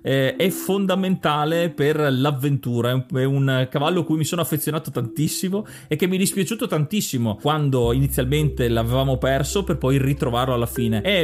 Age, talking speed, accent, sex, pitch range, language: 30-49, 170 wpm, native, male, 135-175 Hz, Italian